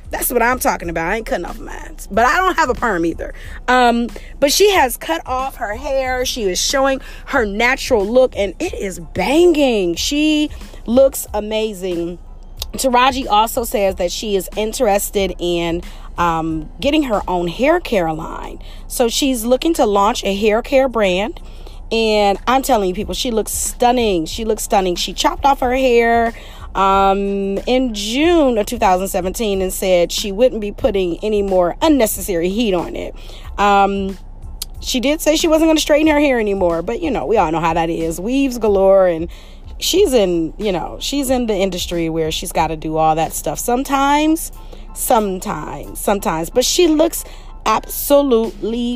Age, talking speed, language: 30-49, 175 wpm, English